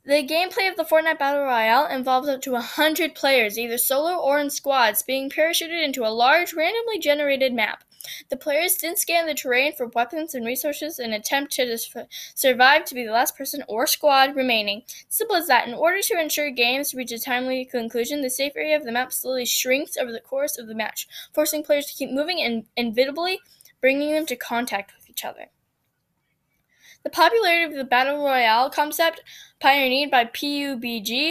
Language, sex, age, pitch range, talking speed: English, female, 10-29, 250-305 Hz, 190 wpm